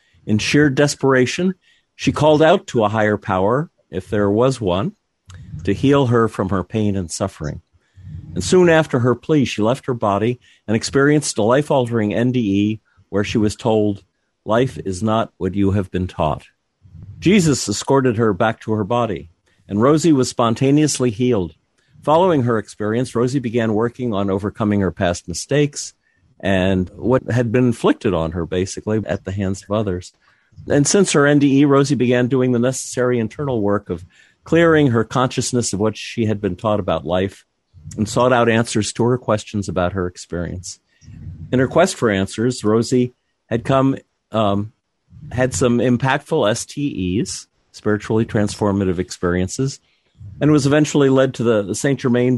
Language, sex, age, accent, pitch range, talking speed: English, male, 50-69, American, 100-130 Hz, 165 wpm